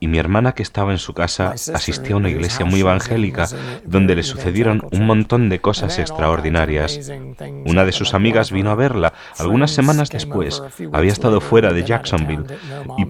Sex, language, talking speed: male, Spanish, 175 wpm